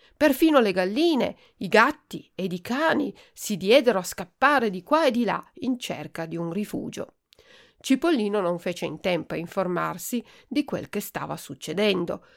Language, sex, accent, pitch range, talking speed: Italian, female, native, 175-255 Hz, 165 wpm